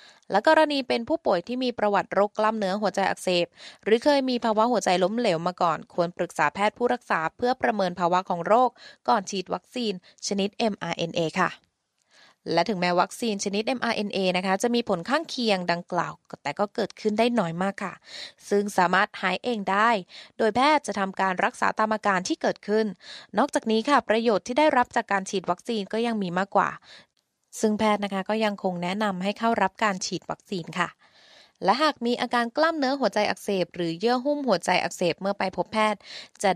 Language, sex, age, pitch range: Thai, female, 20-39, 185-230 Hz